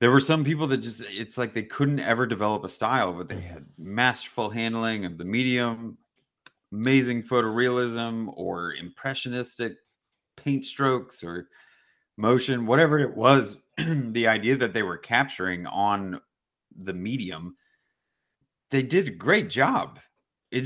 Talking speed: 140 wpm